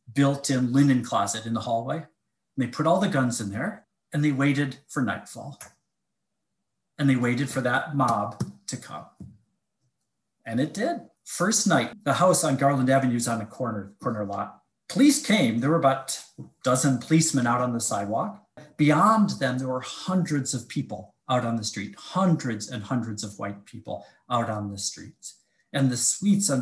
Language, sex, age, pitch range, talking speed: English, male, 40-59, 115-155 Hz, 180 wpm